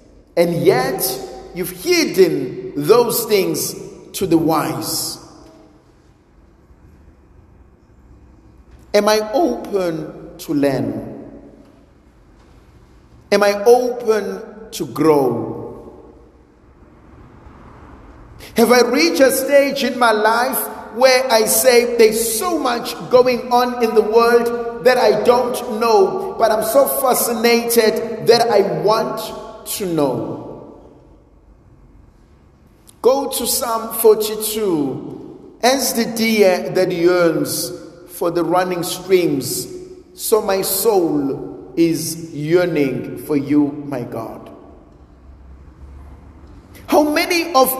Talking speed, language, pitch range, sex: 95 wpm, English, 170-260 Hz, male